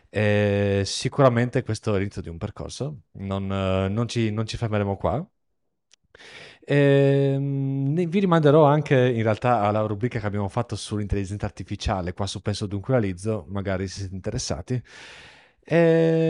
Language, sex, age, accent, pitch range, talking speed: Italian, male, 30-49, native, 100-135 Hz, 140 wpm